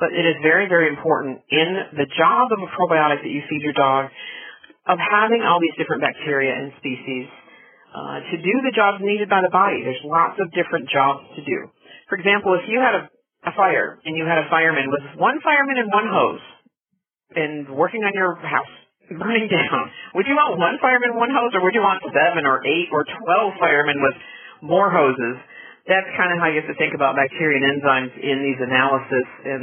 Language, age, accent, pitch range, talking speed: English, 50-69, American, 140-190 Hz, 210 wpm